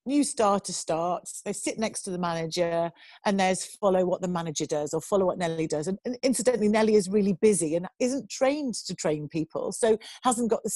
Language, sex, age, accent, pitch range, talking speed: English, female, 40-59, British, 180-235 Hz, 205 wpm